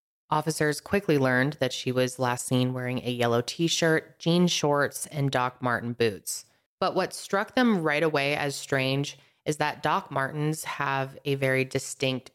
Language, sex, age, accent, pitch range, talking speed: English, female, 20-39, American, 130-160 Hz, 165 wpm